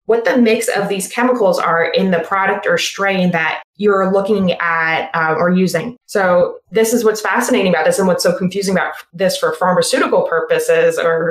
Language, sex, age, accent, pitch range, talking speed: English, female, 20-39, American, 175-230 Hz, 190 wpm